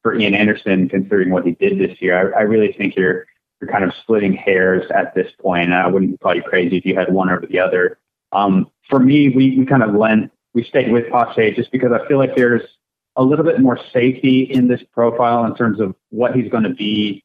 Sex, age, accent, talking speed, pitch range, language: male, 30-49, American, 235 wpm, 95-125 Hz, English